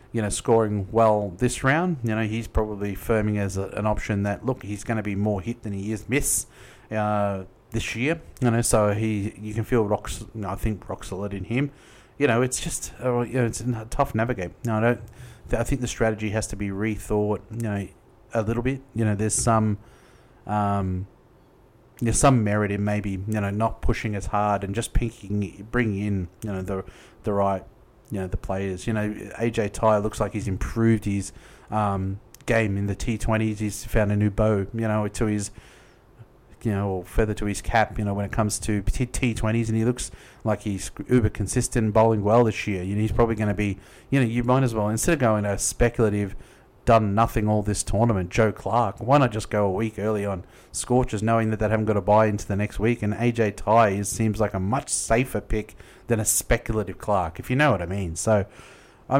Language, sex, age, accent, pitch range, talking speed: English, male, 30-49, Australian, 105-115 Hz, 220 wpm